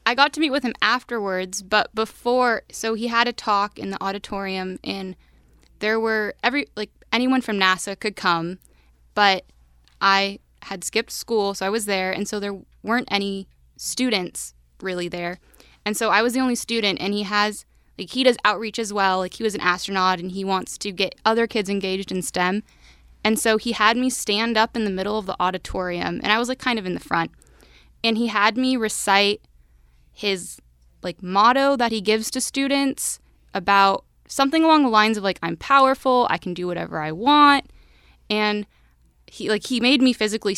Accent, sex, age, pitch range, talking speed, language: American, female, 20-39, 190-235 Hz, 195 wpm, English